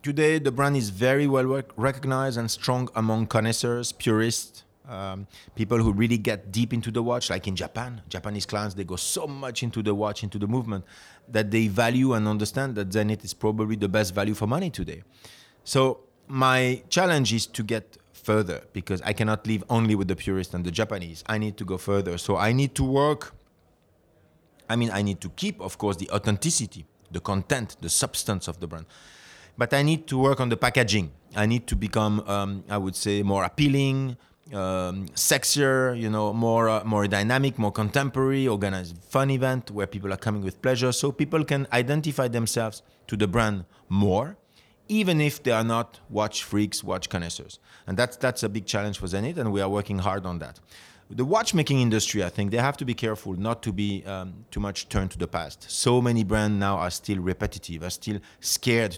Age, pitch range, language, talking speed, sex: 30-49, 100-125 Hz, English, 200 wpm, male